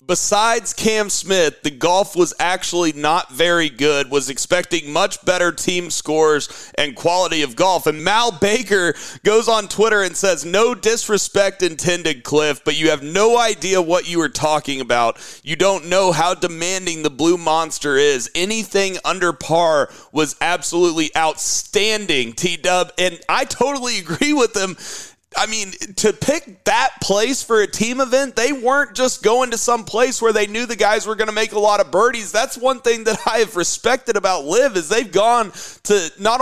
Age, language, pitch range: 30-49, English, 175-235 Hz